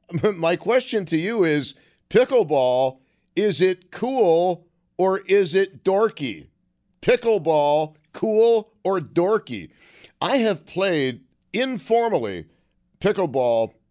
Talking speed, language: 95 wpm, English